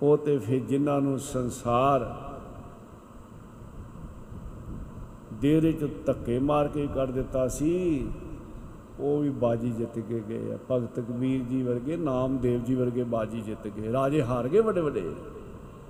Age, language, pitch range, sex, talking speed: 50-69, Punjabi, 115-155 Hz, male, 135 wpm